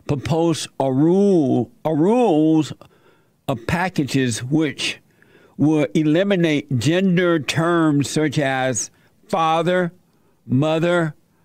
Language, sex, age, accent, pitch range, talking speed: English, male, 60-79, American, 130-170 Hz, 85 wpm